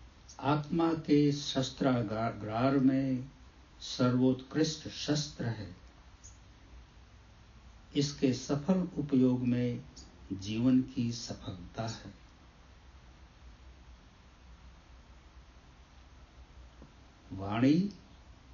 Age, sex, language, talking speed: 60-79, male, English, 50 wpm